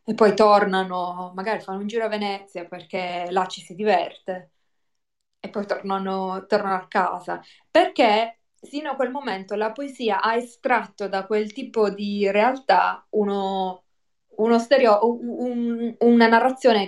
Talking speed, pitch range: 140 wpm, 190-230 Hz